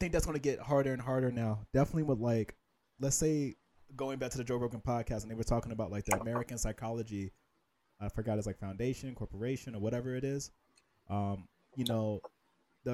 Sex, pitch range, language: male, 110-135 Hz, English